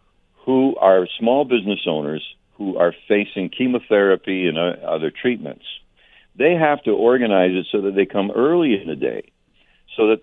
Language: English